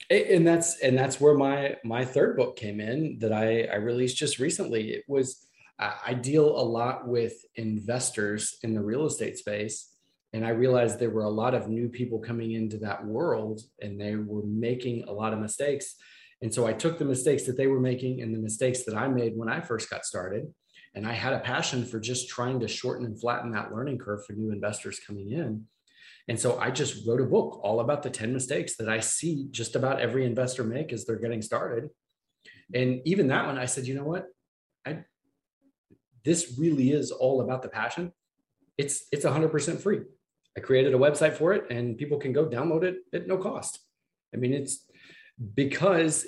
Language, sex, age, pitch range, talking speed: English, male, 30-49, 110-140 Hz, 200 wpm